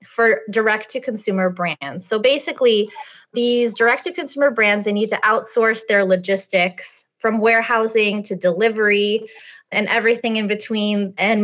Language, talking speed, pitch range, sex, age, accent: English, 120 wpm, 195-230 Hz, female, 20-39, American